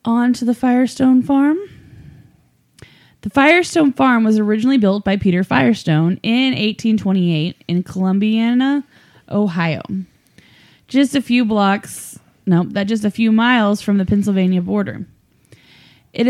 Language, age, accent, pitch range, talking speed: English, 10-29, American, 195-245 Hz, 125 wpm